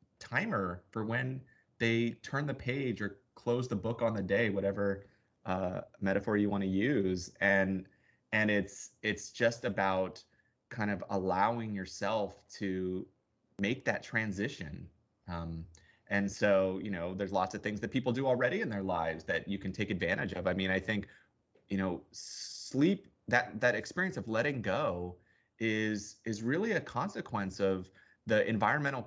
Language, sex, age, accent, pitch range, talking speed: English, male, 30-49, American, 95-115 Hz, 160 wpm